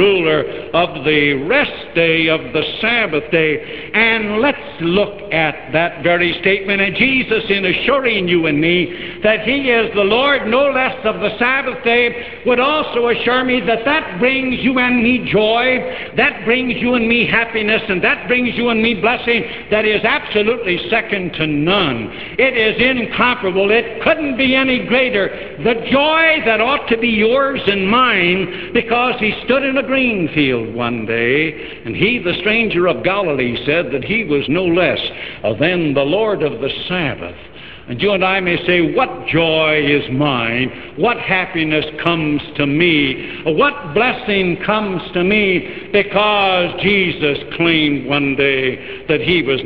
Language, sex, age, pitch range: English, male, 70-89, 160-230 Hz